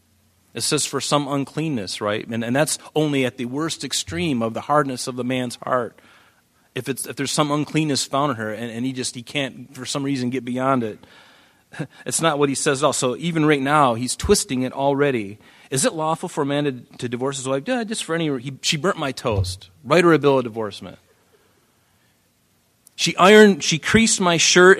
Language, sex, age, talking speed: English, male, 30-49, 215 wpm